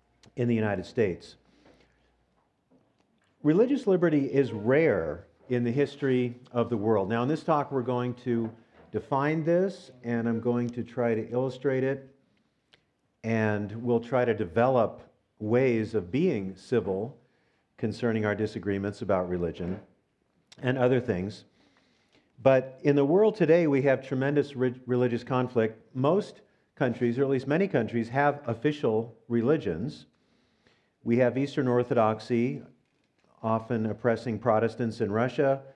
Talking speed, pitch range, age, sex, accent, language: 130 wpm, 110-130 Hz, 50-69, male, American, English